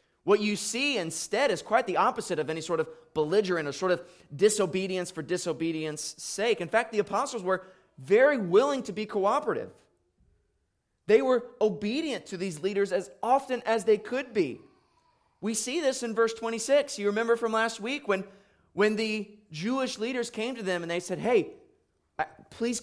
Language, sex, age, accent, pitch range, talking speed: English, male, 20-39, American, 155-220 Hz, 175 wpm